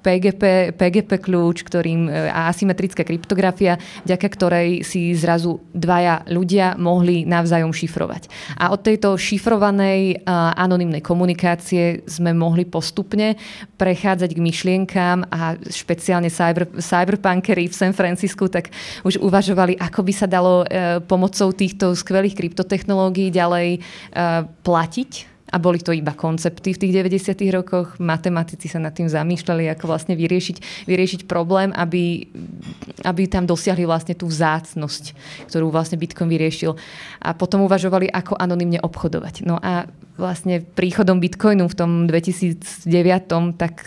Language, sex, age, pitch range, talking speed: Slovak, female, 20-39, 170-190 Hz, 125 wpm